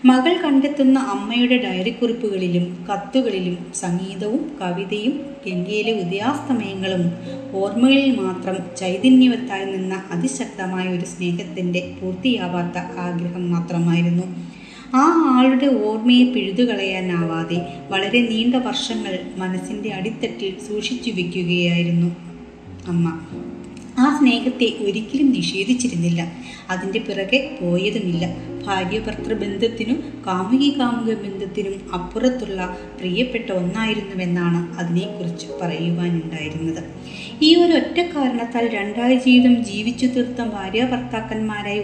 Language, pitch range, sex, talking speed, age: Malayalam, 180-245 Hz, female, 85 wpm, 20-39